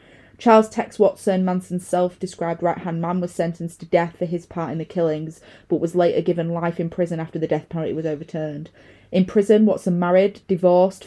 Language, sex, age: English, female, 20-39